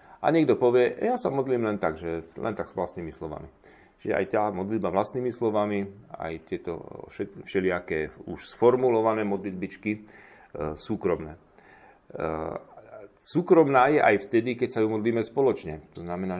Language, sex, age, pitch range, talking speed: Slovak, male, 40-59, 95-115 Hz, 140 wpm